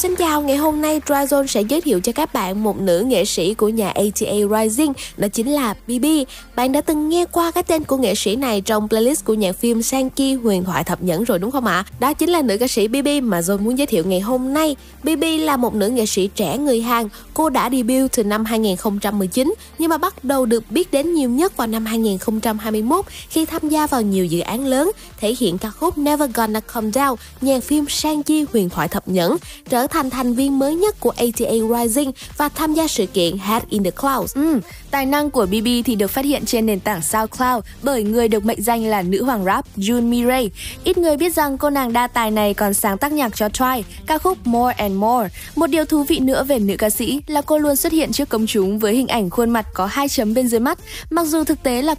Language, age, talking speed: Vietnamese, 20-39, 240 wpm